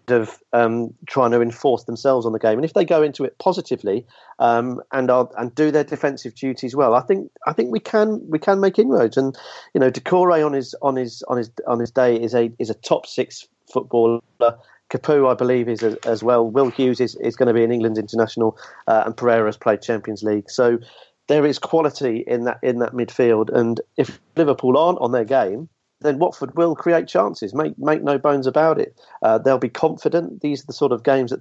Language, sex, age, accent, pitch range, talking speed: English, male, 40-59, British, 115-140 Hz, 225 wpm